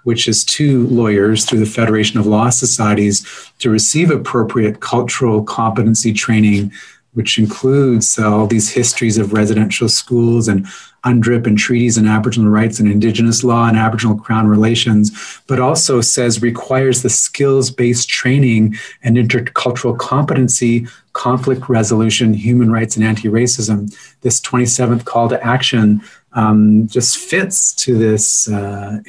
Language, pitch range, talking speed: English, 110-125 Hz, 135 wpm